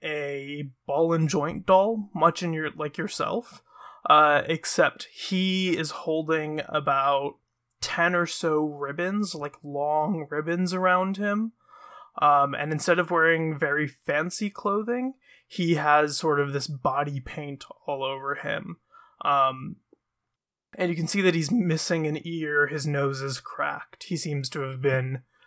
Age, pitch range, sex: 20-39, 145-180 Hz, male